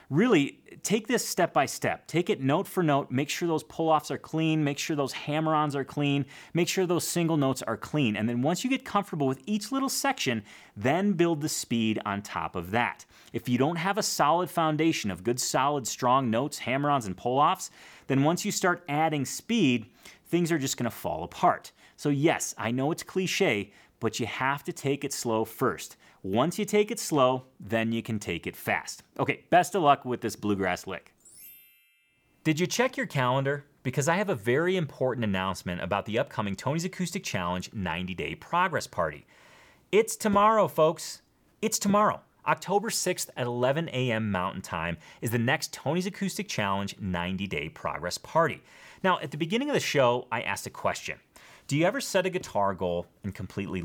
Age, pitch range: 30-49, 115-180 Hz